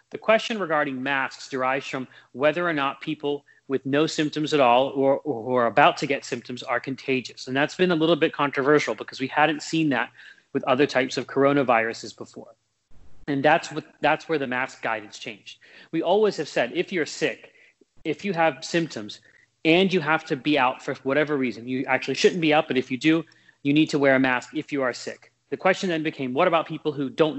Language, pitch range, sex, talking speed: English, 130-155 Hz, male, 215 wpm